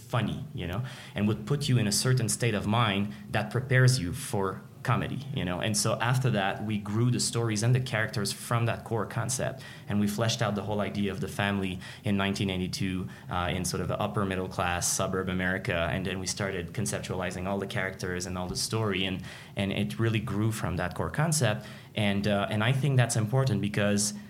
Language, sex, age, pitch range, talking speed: English, male, 20-39, 100-125 Hz, 210 wpm